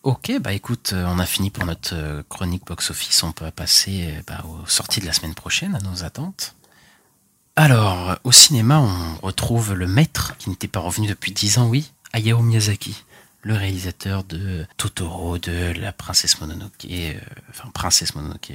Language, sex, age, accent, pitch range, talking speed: French, male, 30-49, French, 85-110 Hz, 170 wpm